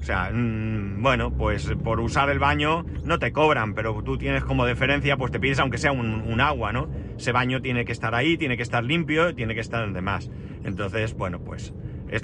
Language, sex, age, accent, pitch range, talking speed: Spanish, male, 40-59, Spanish, 110-135 Hz, 215 wpm